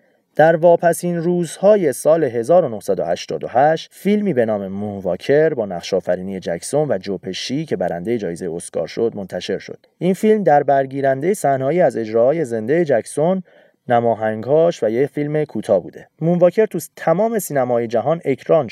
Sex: male